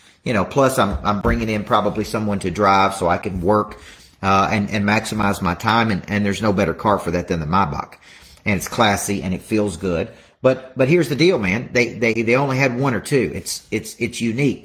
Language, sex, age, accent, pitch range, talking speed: English, male, 40-59, American, 100-135 Hz, 235 wpm